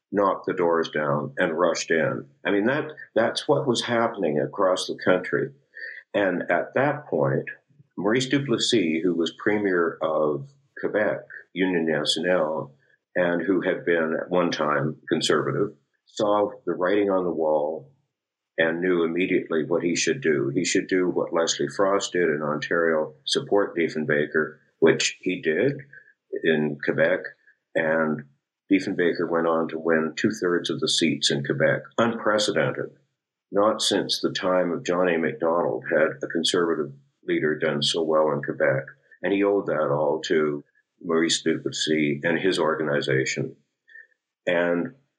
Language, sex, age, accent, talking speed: English, male, 50-69, American, 145 wpm